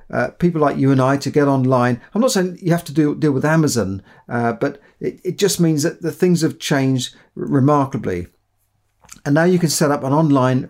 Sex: male